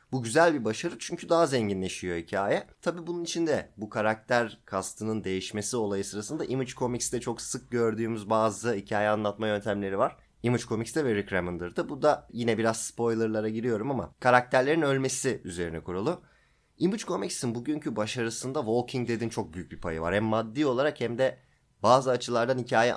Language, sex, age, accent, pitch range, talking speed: Turkish, male, 30-49, native, 105-130 Hz, 160 wpm